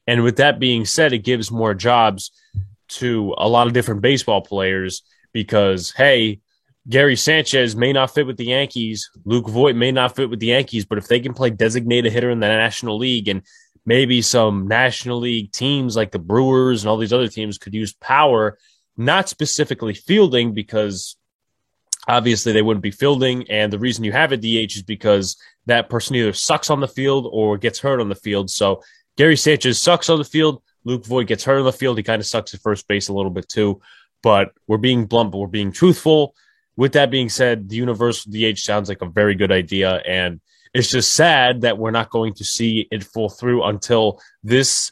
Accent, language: American, English